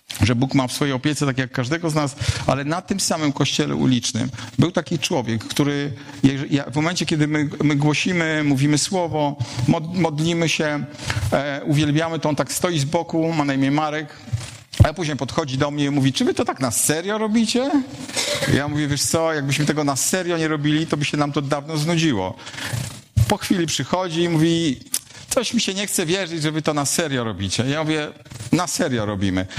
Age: 50-69